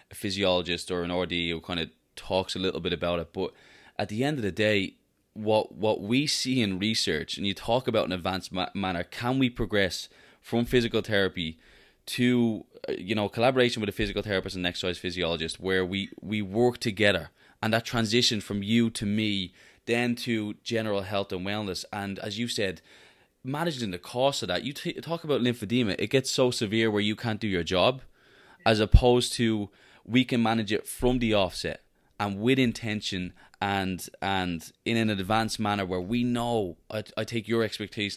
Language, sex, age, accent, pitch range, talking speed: English, male, 20-39, Irish, 95-115 Hz, 190 wpm